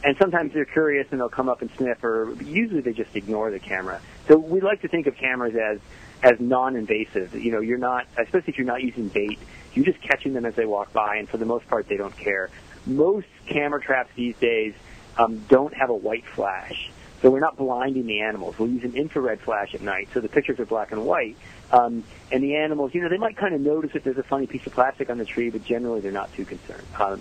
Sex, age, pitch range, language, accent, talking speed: male, 40-59, 115-145 Hz, English, American, 245 wpm